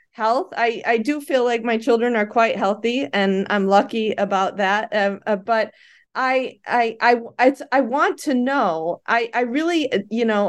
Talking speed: 185 wpm